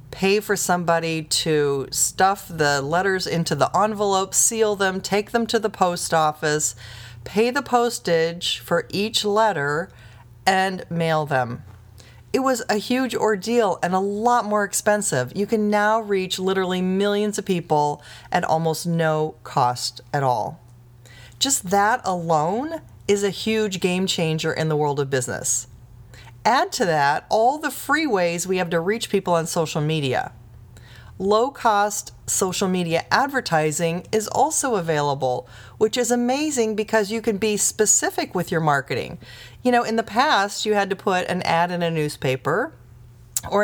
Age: 40-59